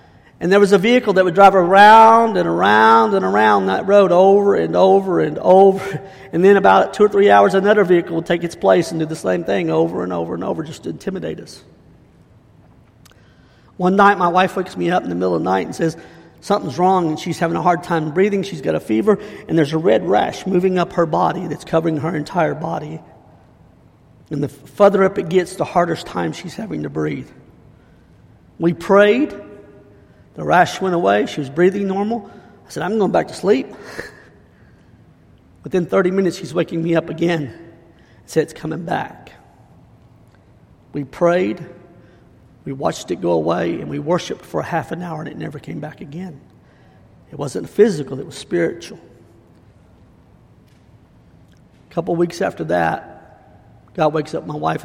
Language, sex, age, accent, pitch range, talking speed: English, male, 50-69, American, 145-190 Hz, 185 wpm